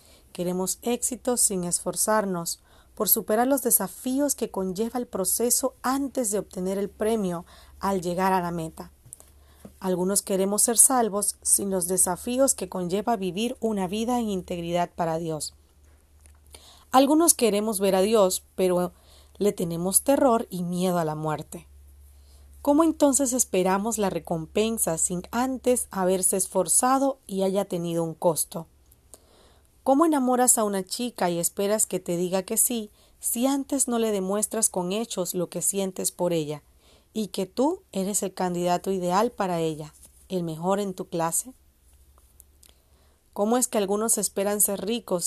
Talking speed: 145 wpm